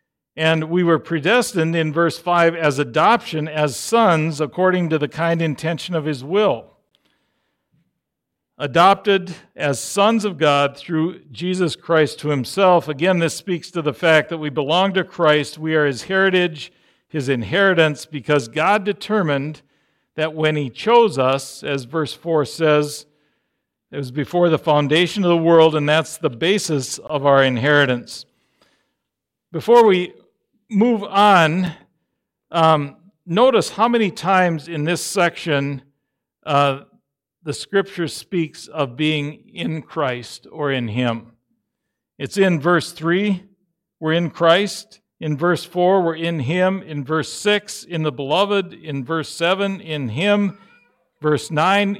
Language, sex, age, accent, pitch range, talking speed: English, male, 60-79, American, 150-185 Hz, 140 wpm